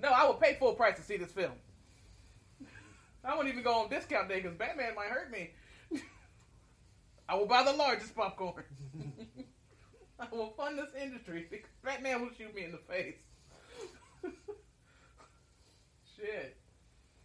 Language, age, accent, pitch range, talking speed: English, 30-49, American, 140-220 Hz, 145 wpm